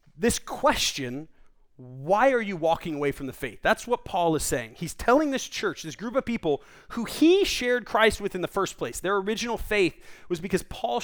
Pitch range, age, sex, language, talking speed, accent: 145-205 Hz, 30-49, male, English, 205 wpm, American